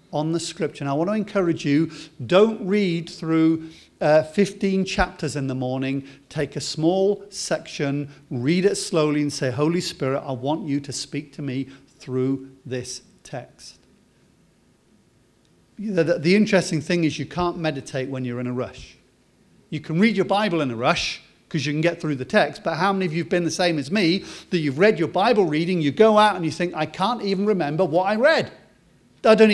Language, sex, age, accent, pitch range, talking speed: English, male, 50-69, British, 140-185 Hz, 205 wpm